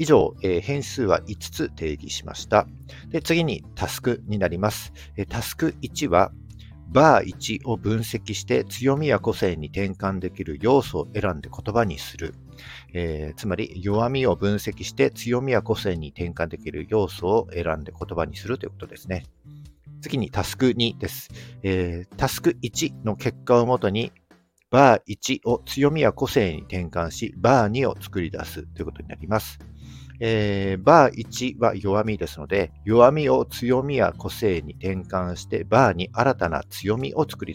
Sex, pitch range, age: male, 85-120 Hz, 50-69